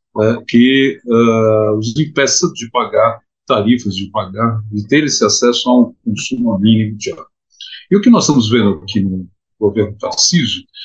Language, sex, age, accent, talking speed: Portuguese, male, 50-69, Brazilian, 165 wpm